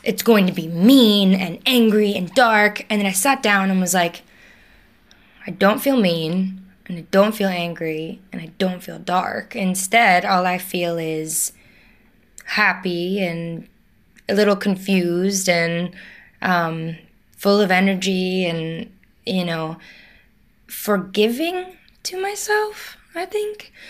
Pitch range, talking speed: 175-210 Hz, 135 wpm